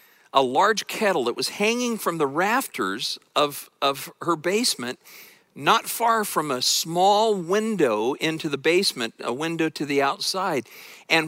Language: English